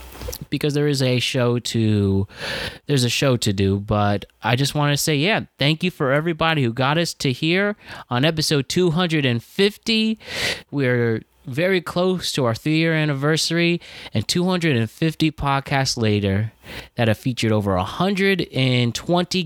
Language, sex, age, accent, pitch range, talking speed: English, male, 30-49, American, 110-160 Hz, 150 wpm